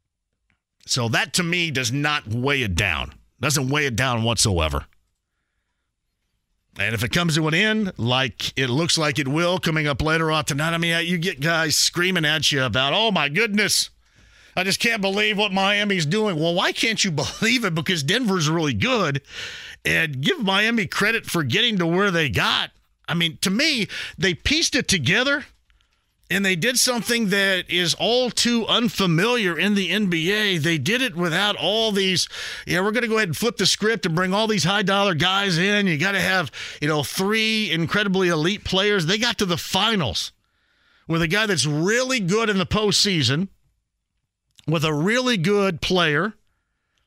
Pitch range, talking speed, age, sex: 145-205 Hz, 180 wpm, 50-69, male